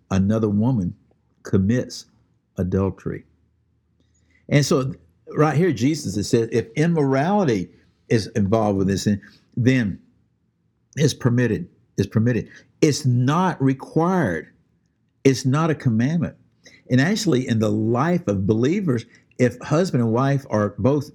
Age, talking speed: 60-79, 115 wpm